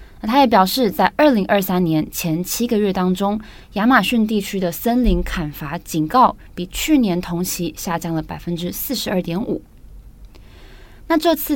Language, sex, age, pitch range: Chinese, female, 20-39, 170-215 Hz